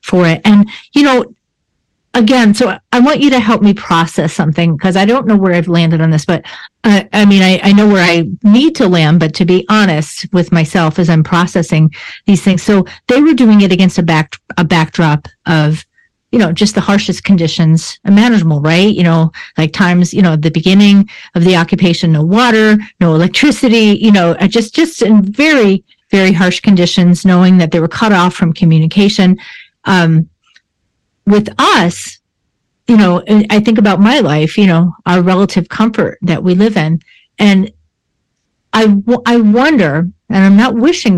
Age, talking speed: 40-59, 185 wpm